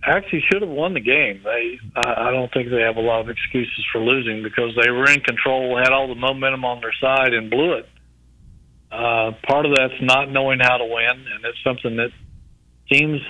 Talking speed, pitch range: 210 wpm, 115-130 Hz